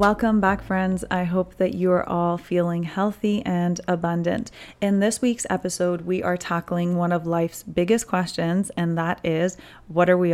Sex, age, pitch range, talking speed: female, 30-49, 170-215 Hz, 180 wpm